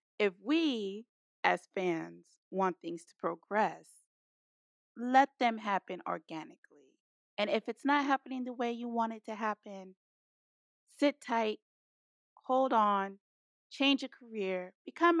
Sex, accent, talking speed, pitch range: female, American, 125 wpm, 195-265 Hz